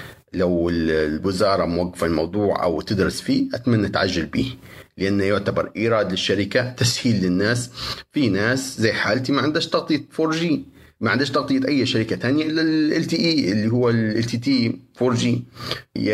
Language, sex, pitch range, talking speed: Arabic, male, 105-130 Hz, 155 wpm